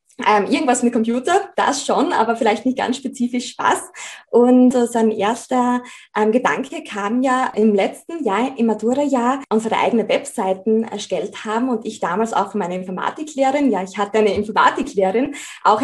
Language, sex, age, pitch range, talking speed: German, female, 20-39, 220-270 Hz, 160 wpm